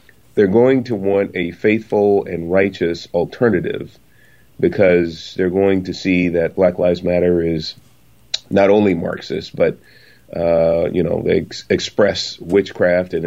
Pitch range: 85-100 Hz